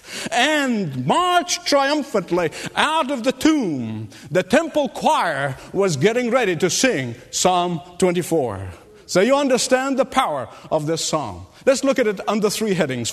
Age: 50-69